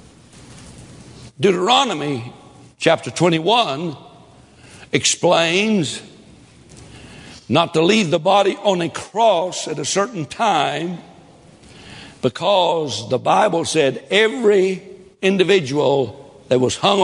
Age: 60-79